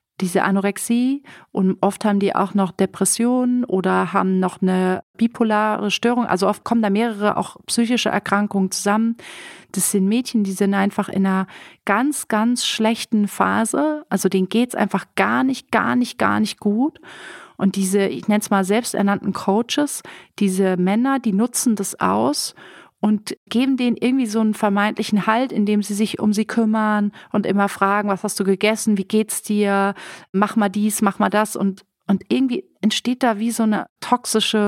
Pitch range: 195-230 Hz